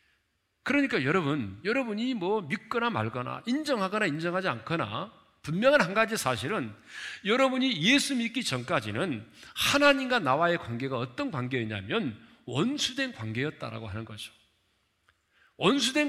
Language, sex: Korean, male